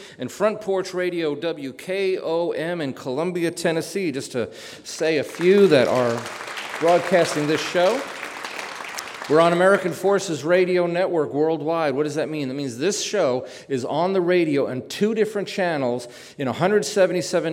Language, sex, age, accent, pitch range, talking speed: English, male, 40-59, American, 135-175 Hz, 145 wpm